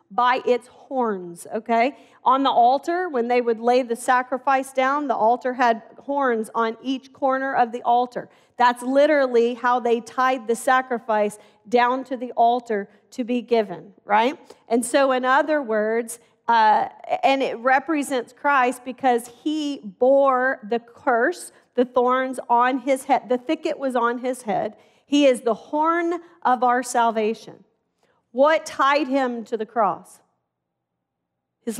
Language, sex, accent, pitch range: English, female, American, 230-275 Hz